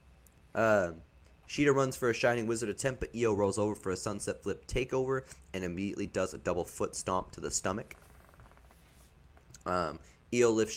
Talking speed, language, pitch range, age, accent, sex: 165 wpm, English, 80-110 Hz, 20-39, American, male